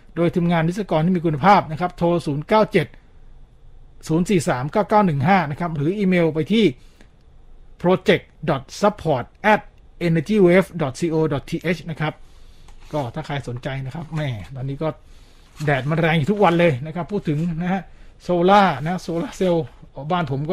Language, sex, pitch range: Thai, male, 150-190 Hz